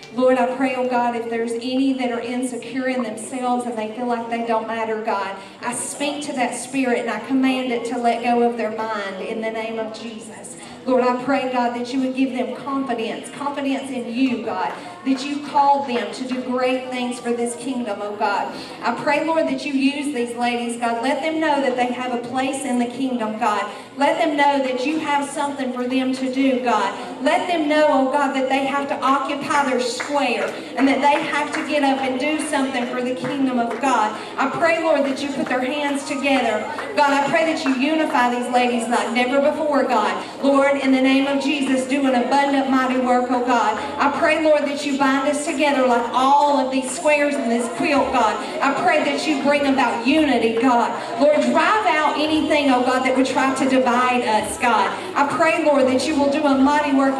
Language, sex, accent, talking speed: English, female, American, 220 wpm